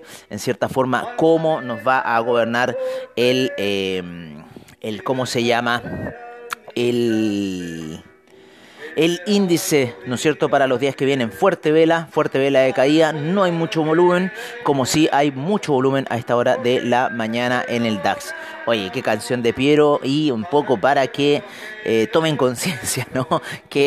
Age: 30-49